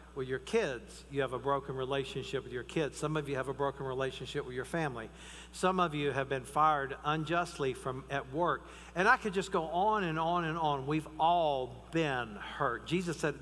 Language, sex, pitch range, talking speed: English, male, 135-185 Hz, 215 wpm